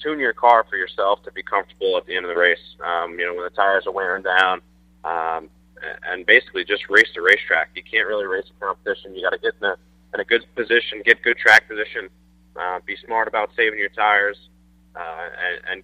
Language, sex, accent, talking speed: English, male, American, 225 wpm